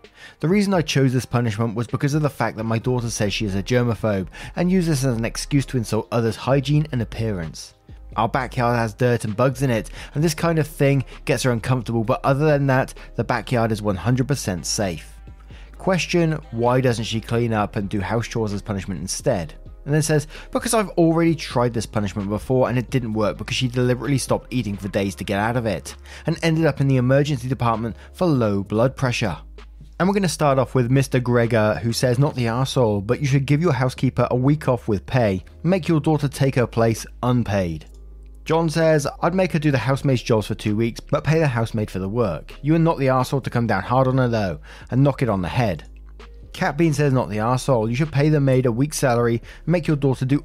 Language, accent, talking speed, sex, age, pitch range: English, British, 230 wpm, male, 20-39, 110-145 Hz